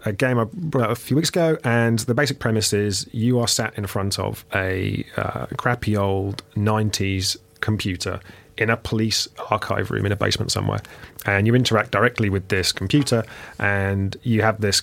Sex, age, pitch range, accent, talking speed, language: male, 30-49, 95-115 Hz, British, 180 wpm, English